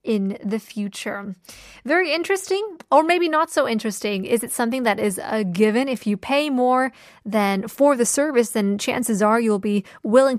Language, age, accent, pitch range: Korean, 20-39, American, 210-265 Hz